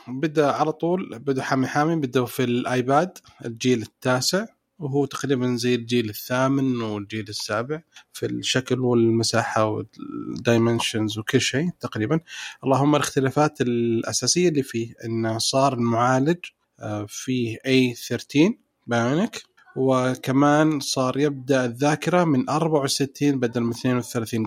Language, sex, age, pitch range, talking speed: Arabic, male, 30-49, 120-150 Hz, 110 wpm